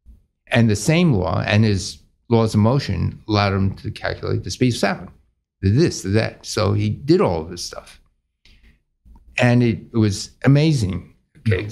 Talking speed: 170 wpm